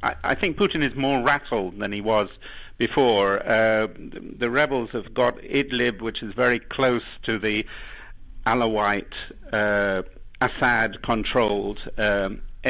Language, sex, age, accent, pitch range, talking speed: English, male, 50-69, British, 110-135 Hz, 130 wpm